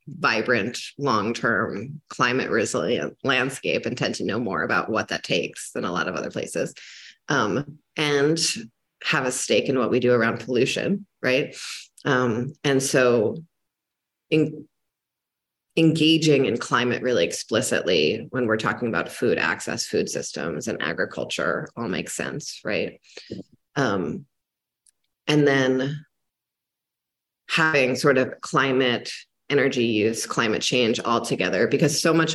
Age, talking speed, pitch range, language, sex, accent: 30-49, 130 wpm, 120-155 Hz, English, female, American